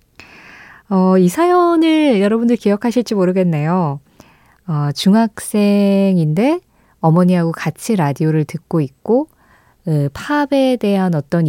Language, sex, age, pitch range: Korean, female, 20-39, 165-235 Hz